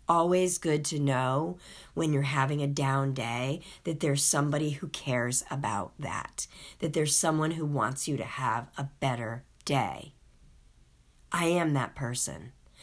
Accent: American